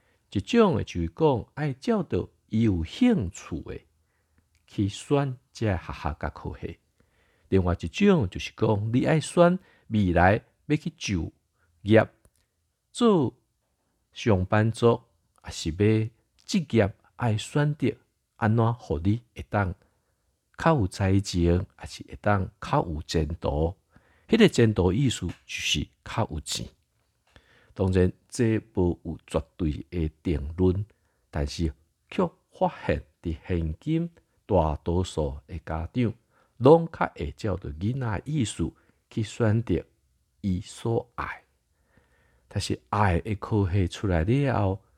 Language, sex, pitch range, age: Chinese, male, 85-115 Hz, 50-69